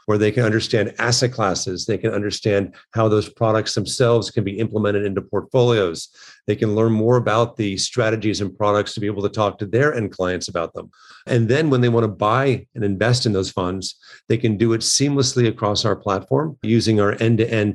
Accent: American